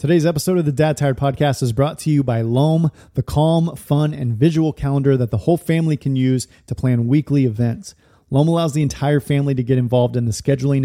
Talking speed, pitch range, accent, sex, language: 220 wpm, 125-150 Hz, American, male, English